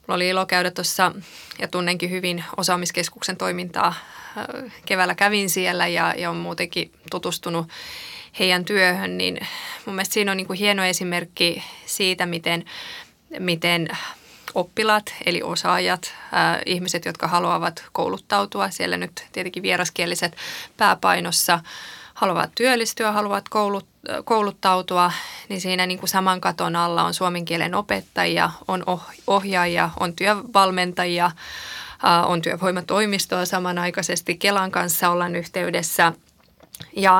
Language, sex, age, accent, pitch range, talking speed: Finnish, female, 20-39, native, 175-195 Hz, 120 wpm